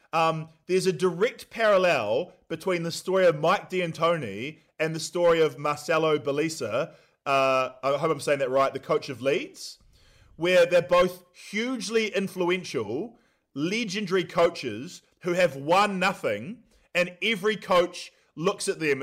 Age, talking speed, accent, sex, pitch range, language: 20-39, 140 wpm, Australian, male, 150-185 Hz, English